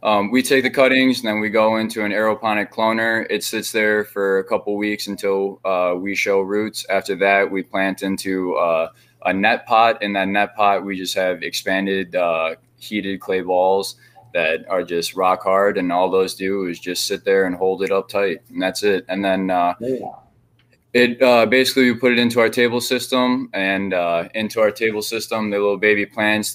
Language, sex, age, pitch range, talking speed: English, male, 20-39, 95-110 Hz, 205 wpm